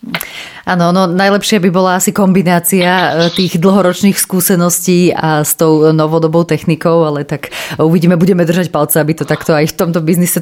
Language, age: Slovak, 30-49